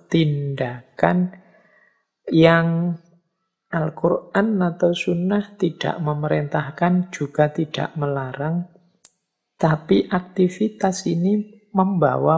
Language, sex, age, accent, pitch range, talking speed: Indonesian, male, 50-69, native, 145-185 Hz, 70 wpm